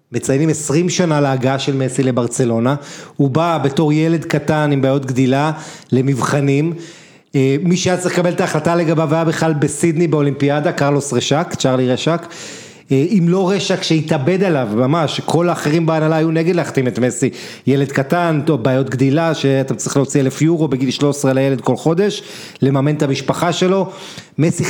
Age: 30-49